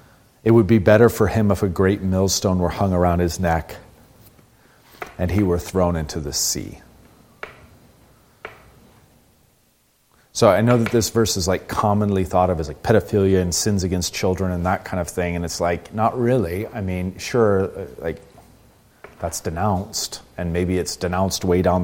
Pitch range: 85-100 Hz